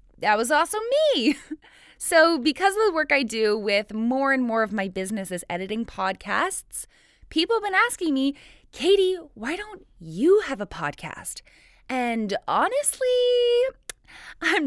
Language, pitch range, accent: English, 195-290 Hz, American